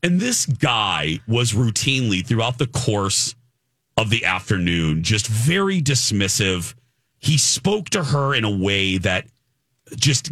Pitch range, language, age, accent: 110-135 Hz, English, 40-59, American